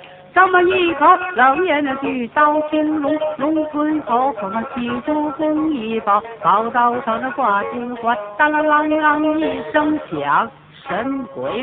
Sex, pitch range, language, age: female, 205-305 Hz, Chinese, 60-79